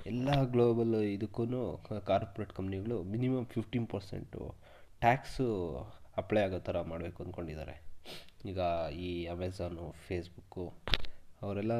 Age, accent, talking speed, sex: 20-39, native, 95 wpm, male